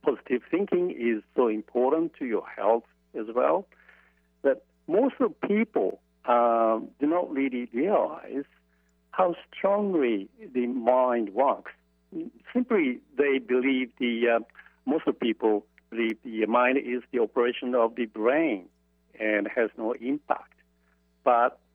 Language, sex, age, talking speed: English, male, 60-79, 125 wpm